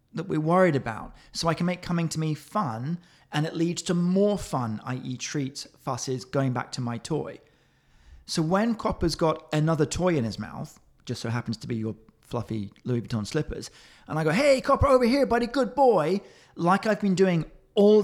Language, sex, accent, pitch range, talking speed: English, male, British, 130-180 Hz, 205 wpm